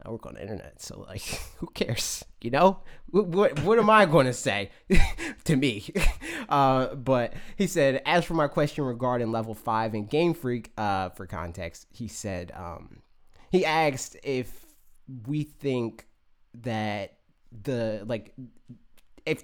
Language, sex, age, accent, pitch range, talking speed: English, male, 20-39, American, 100-135 Hz, 155 wpm